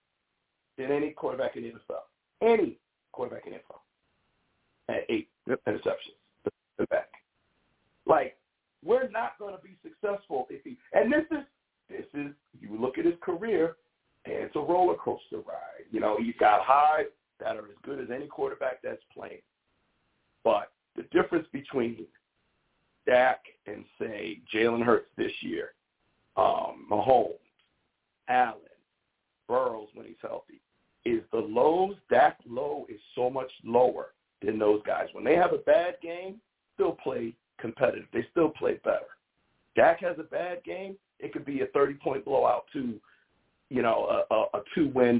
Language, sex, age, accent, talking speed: English, male, 50-69, American, 155 wpm